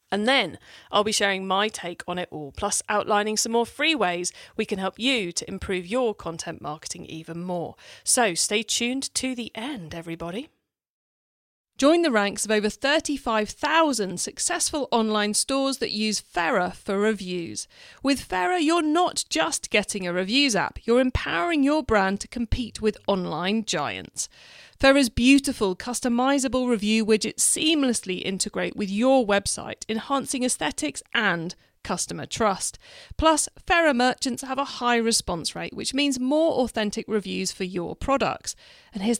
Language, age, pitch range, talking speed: English, 40-59, 200-275 Hz, 150 wpm